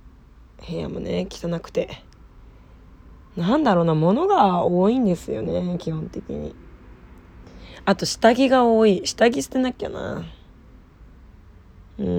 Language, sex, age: Japanese, female, 20-39